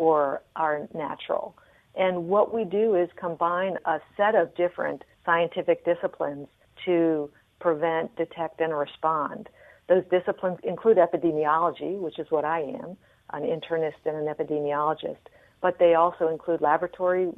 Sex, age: female, 50-69